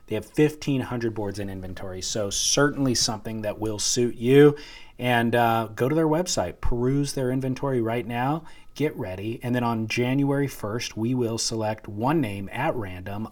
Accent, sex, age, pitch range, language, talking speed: American, male, 30-49, 105-130 Hz, English, 170 wpm